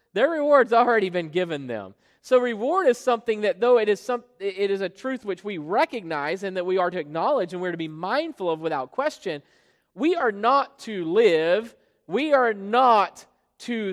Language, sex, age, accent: English, male, 40-59, American